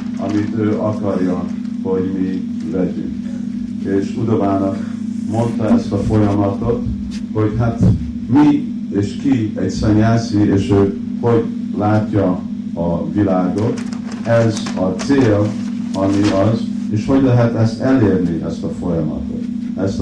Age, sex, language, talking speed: 50-69, male, Hungarian, 115 wpm